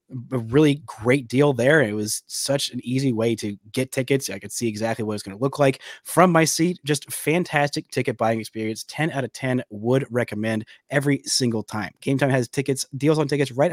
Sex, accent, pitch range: male, American, 115-145 Hz